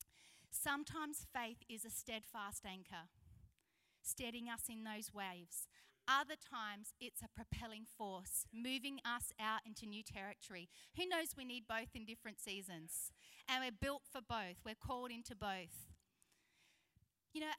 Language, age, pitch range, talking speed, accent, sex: English, 40-59, 215-250 Hz, 145 wpm, Australian, female